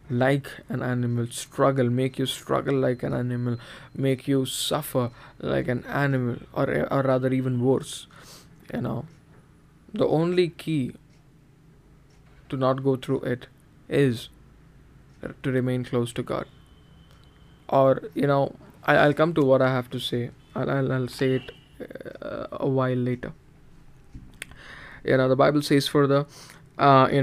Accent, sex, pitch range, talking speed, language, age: Indian, male, 130-145 Hz, 145 wpm, English, 20-39